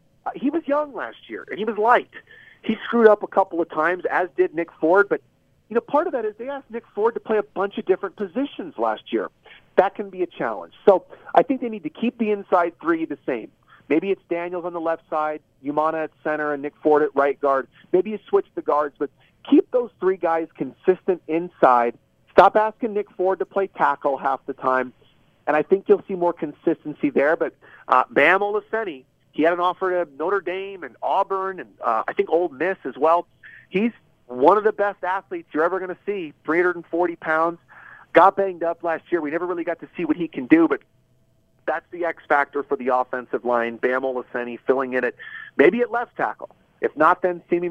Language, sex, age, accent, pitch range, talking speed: English, male, 40-59, American, 150-210 Hz, 220 wpm